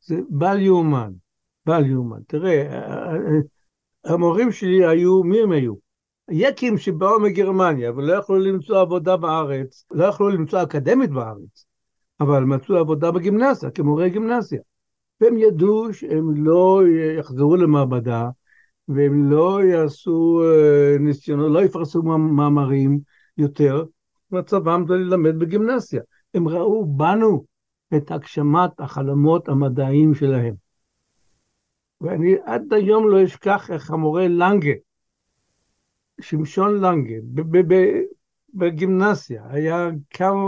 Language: Hebrew